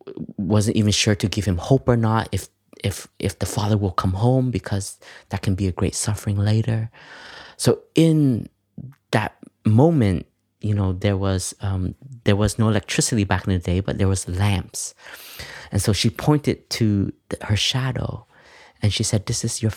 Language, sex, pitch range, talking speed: English, male, 95-115 Hz, 180 wpm